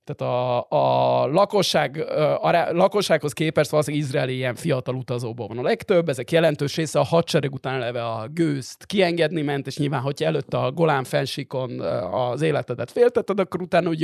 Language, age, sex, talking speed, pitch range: Hungarian, 30-49, male, 165 wpm, 125-160 Hz